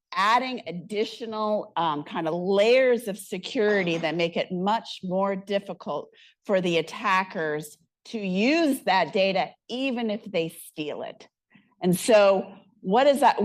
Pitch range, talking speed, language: 180-235 Hz, 140 wpm, English